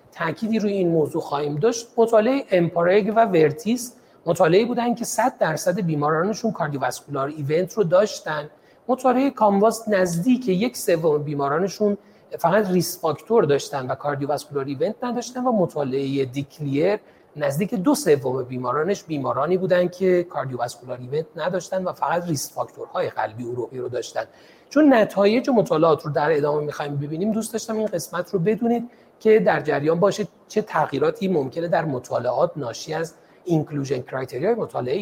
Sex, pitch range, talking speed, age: male, 150-220 Hz, 140 wpm, 40-59